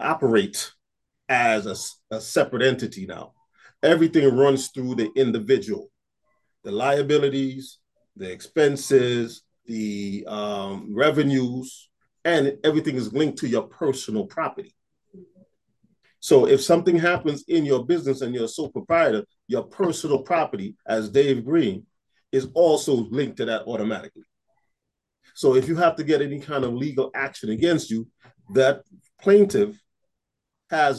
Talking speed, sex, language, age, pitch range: 130 wpm, male, English, 40-59, 125-170 Hz